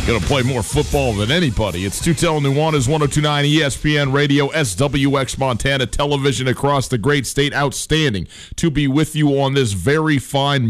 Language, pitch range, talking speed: English, 105-135 Hz, 165 wpm